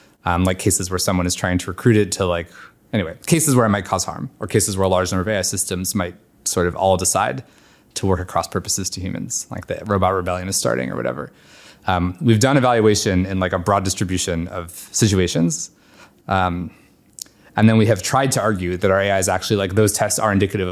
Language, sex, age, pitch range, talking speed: English, male, 20-39, 90-105 Hz, 220 wpm